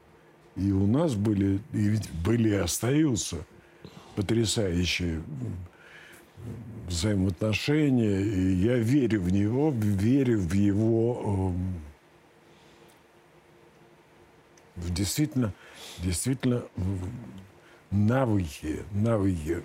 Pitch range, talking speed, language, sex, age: 90-115 Hz, 75 wpm, Russian, male, 60-79